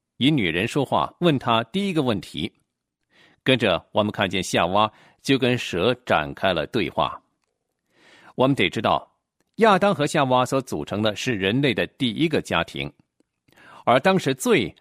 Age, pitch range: 50-69, 105-160 Hz